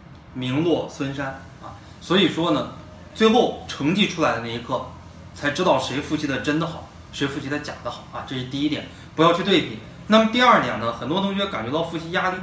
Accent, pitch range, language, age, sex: native, 125-180 Hz, Chinese, 20-39, male